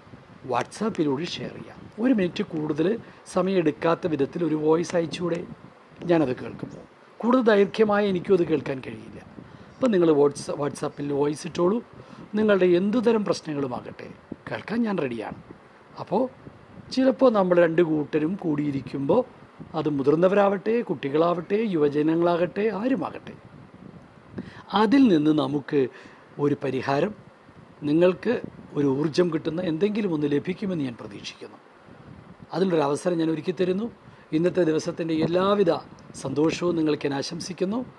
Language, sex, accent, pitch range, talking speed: Malayalam, male, native, 145-195 Hz, 105 wpm